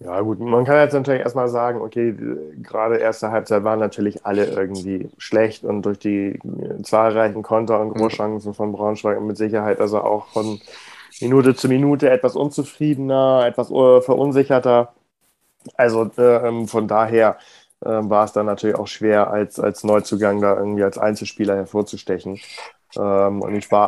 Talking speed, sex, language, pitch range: 155 wpm, male, German, 105-120 Hz